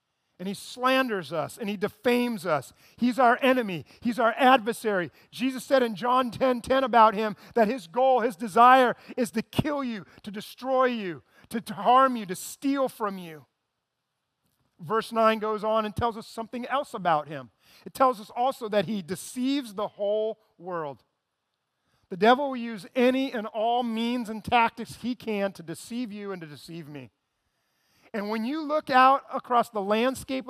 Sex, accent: male, American